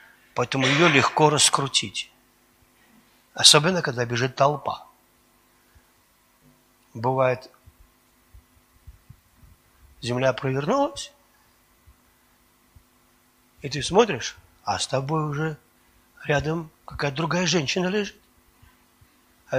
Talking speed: 75 wpm